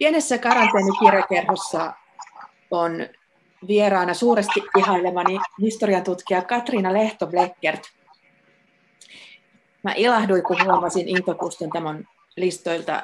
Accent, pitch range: native, 170-205 Hz